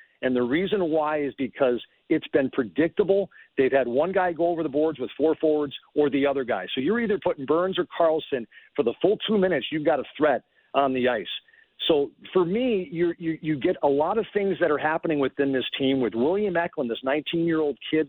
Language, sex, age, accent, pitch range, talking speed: English, male, 50-69, American, 135-175 Hz, 220 wpm